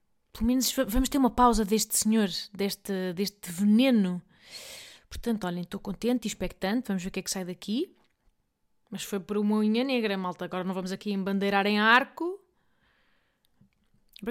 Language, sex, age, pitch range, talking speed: Portuguese, female, 20-39, 205-275 Hz, 170 wpm